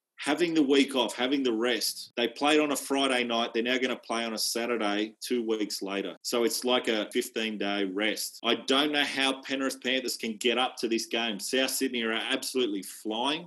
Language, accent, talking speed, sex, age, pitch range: English, Australian, 210 wpm, male, 30-49, 110-130 Hz